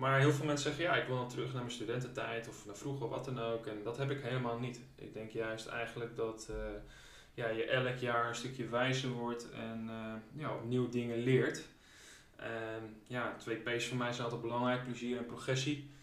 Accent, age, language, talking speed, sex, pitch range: Dutch, 20-39, Dutch, 215 wpm, male, 110-125 Hz